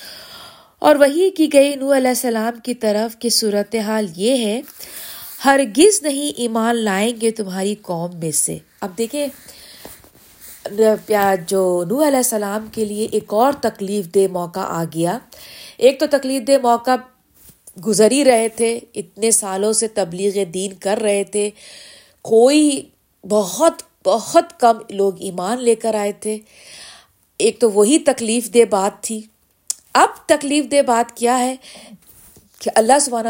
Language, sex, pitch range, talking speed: Urdu, female, 205-265 Hz, 145 wpm